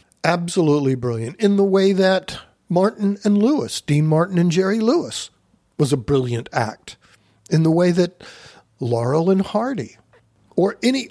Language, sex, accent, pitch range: English, male, American, 135-180 Hz